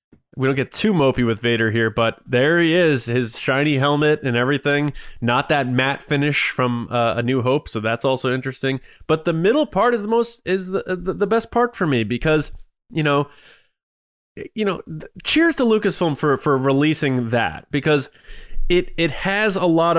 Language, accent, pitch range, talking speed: English, American, 125-155 Hz, 185 wpm